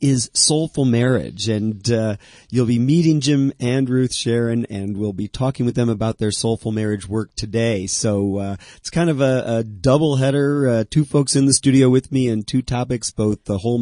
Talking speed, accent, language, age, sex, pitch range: 205 wpm, American, English, 40-59, male, 105-130 Hz